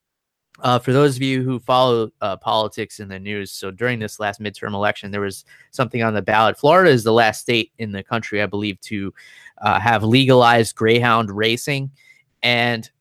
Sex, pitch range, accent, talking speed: male, 105-135 Hz, American, 190 wpm